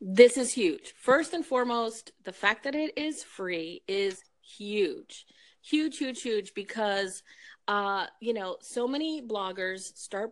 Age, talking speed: 30-49, 145 wpm